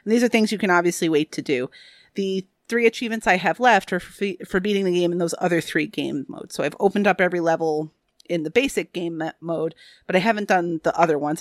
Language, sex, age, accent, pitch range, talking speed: English, female, 30-49, American, 165-225 Hz, 245 wpm